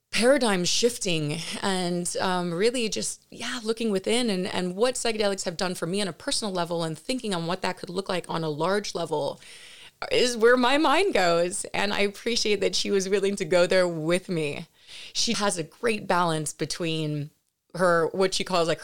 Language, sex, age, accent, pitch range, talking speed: English, female, 30-49, American, 175-230 Hz, 195 wpm